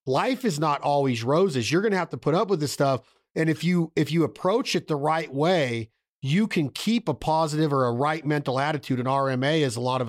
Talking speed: 245 wpm